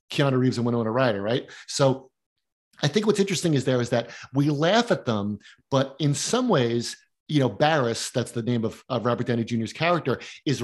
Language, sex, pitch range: English, male, 125-160 Hz